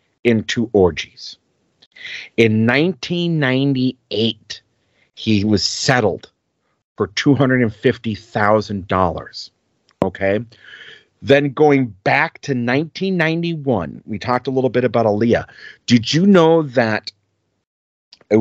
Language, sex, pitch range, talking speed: English, male, 105-140 Hz, 90 wpm